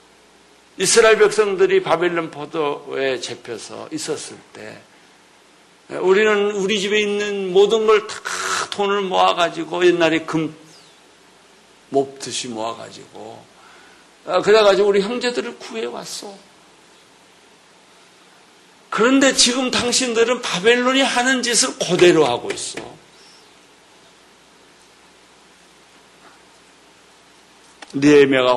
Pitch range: 145-215 Hz